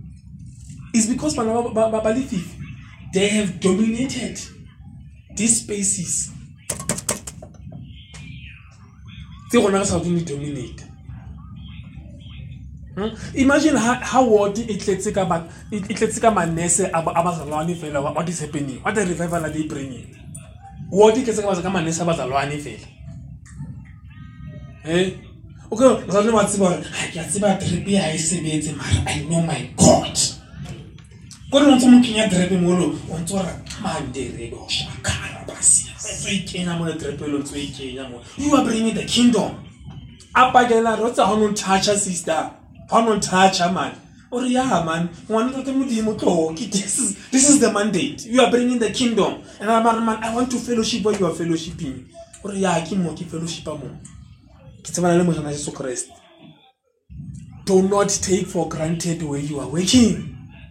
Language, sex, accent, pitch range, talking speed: English, male, Nigerian, 160-220 Hz, 65 wpm